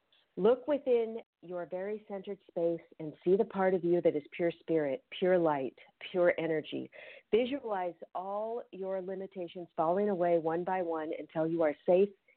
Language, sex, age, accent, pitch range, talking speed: English, female, 40-59, American, 170-205 Hz, 160 wpm